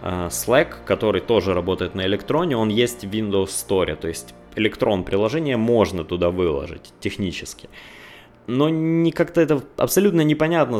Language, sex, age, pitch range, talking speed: Russian, male, 20-39, 100-120 Hz, 135 wpm